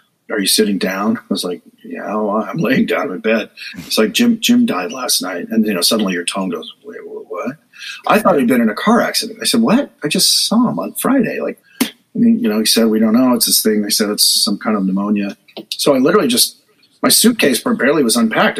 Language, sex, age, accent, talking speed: English, male, 40-59, American, 250 wpm